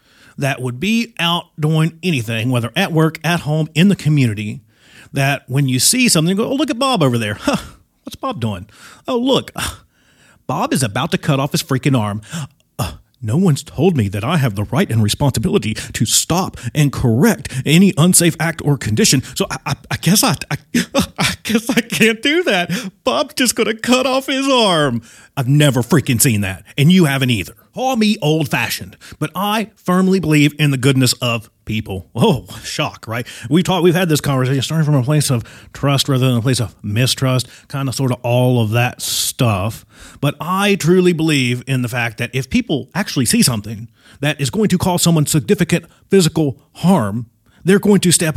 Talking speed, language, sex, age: 195 wpm, English, male, 40-59